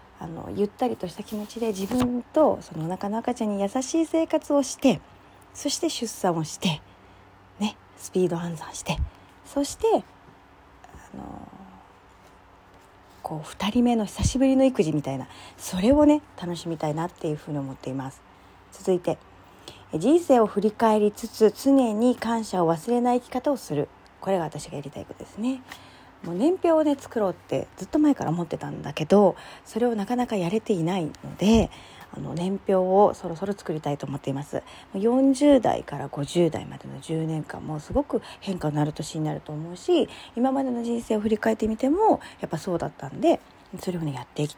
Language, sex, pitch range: Japanese, female, 150-235 Hz